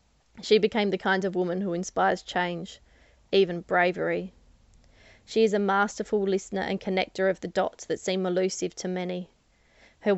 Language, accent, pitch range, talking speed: English, Australian, 180-200 Hz, 160 wpm